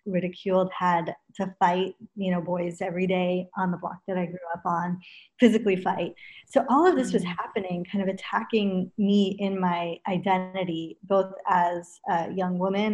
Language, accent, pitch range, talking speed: English, American, 180-210 Hz, 170 wpm